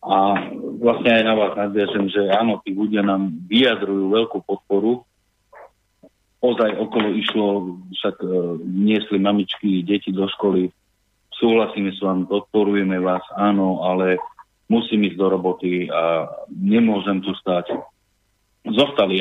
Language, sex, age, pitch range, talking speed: Slovak, male, 40-59, 100-115 Hz, 125 wpm